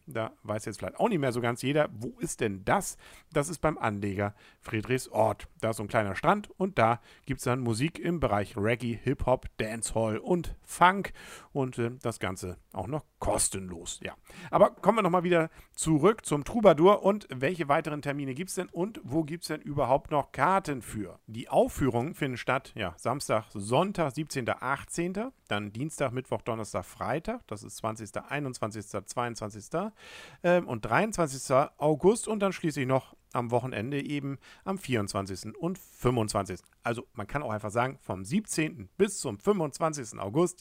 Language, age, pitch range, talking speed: German, 50-69, 110-165 Hz, 175 wpm